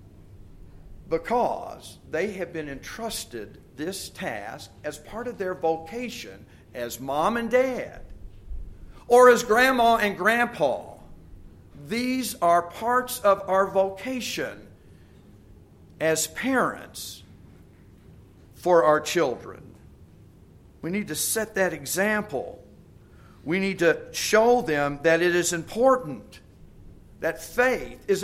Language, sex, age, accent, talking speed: English, male, 50-69, American, 105 wpm